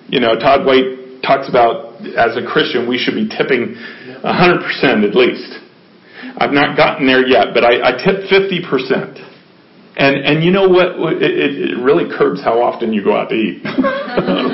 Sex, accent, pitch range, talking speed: male, American, 145-230 Hz, 185 wpm